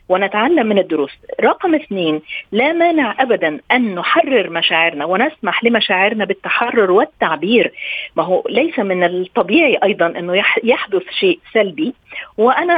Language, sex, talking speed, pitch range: Arabic, female, 125 wpm, 185-260 Hz